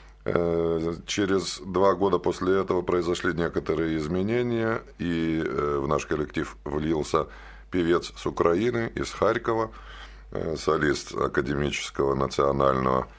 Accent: native